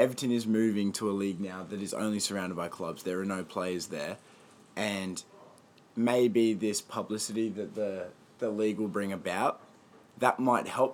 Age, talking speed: 20-39, 175 wpm